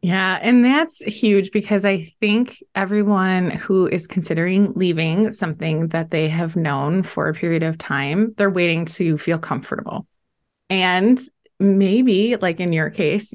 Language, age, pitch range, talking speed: English, 20-39, 175-230 Hz, 150 wpm